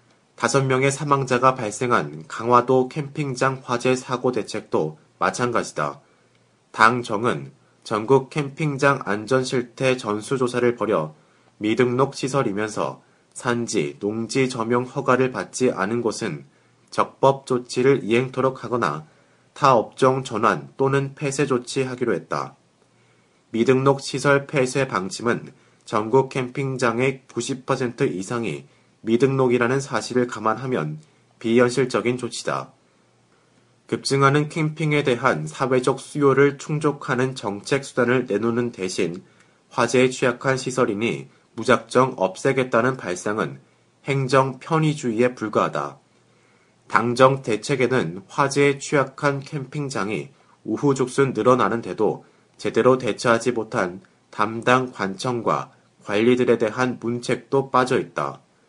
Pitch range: 115-135 Hz